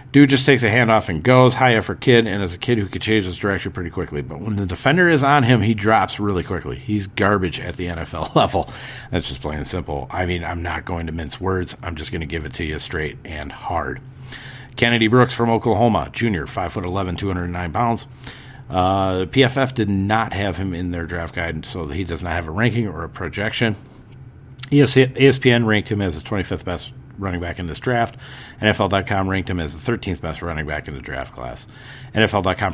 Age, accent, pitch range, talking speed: 40-59, American, 90-125 Hz, 225 wpm